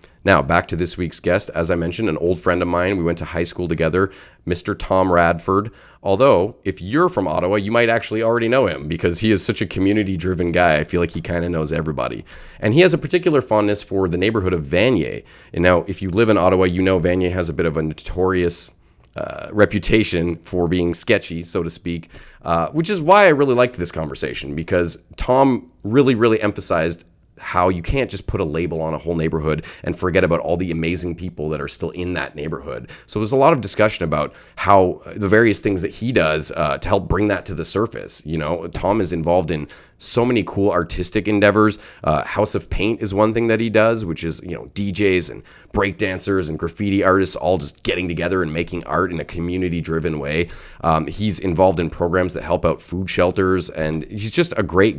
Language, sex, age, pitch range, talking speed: English, male, 30-49, 85-105 Hz, 220 wpm